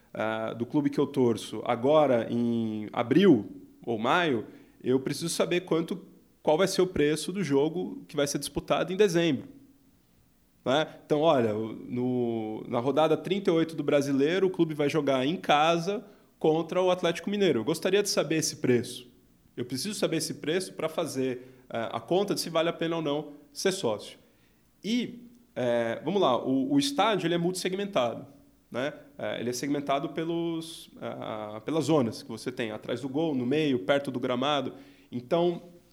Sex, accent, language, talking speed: male, Brazilian, Portuguese, 170 wpm